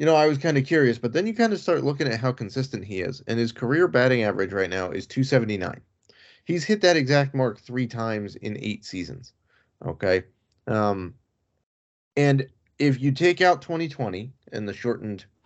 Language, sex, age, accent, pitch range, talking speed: English, male, 30-49, American, 105-140 Hz, 190 wpm